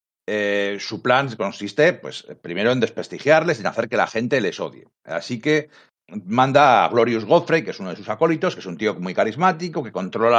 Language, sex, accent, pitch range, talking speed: Spanish, male, Spanish, 115-145 Hz, 210 wpm